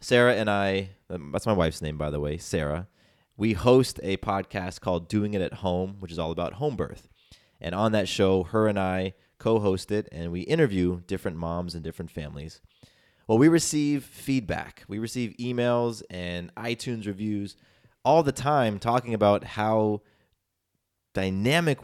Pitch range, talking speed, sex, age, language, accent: 85-115 Hz, 165 wpm, male, 20-39, English, American